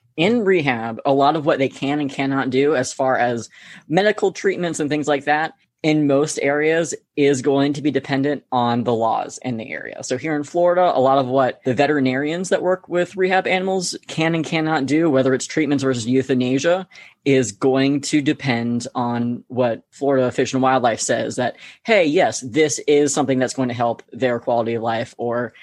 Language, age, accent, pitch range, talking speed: English, 20-39, American, 130-180 Hz, 195 wpm